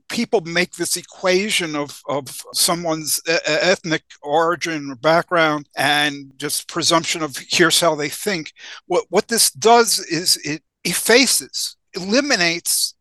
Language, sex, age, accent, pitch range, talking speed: English, male, 50-69, American, 145-180 Hz, 125 wpm